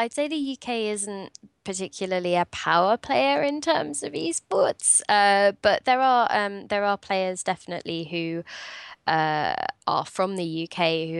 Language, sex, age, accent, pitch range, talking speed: English, female, 20-39, British, 160-185 Hz, 155 wpm